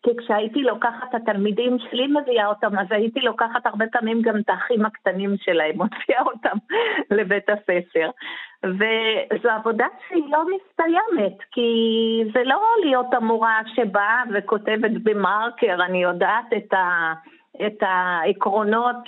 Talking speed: 125 wpm